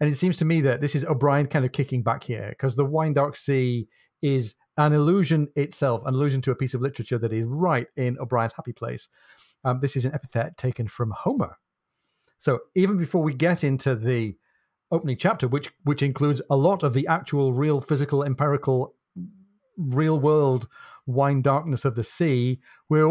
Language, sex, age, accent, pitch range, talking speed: English, male, 40-59, British, 125-150 Hz, 190 wpm